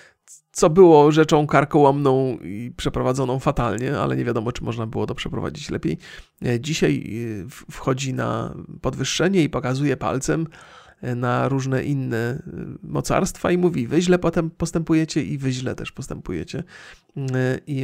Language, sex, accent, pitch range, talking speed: Polish, male, native, 120-155 Hz, 130 wpm